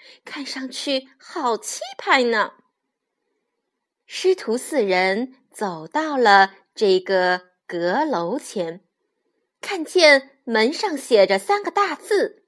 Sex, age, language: female, 30-49, Chinese